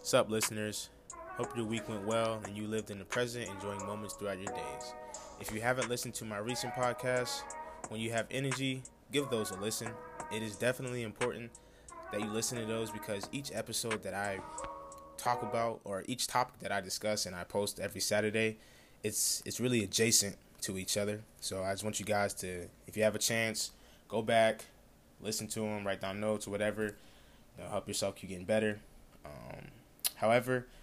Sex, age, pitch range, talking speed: male, 20-39, 105-120 Hz, 190 wpm